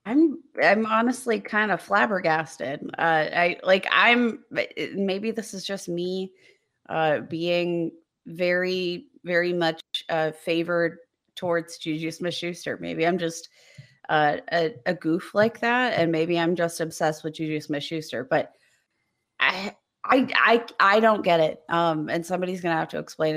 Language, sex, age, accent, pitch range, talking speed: English, female, 30-49, American, 160-195 Hz, 150 wpm